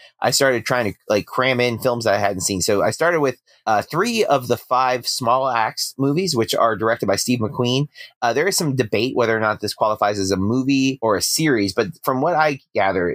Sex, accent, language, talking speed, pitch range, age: male, American, English, 230 wpm, 100-125 Hz, 30-49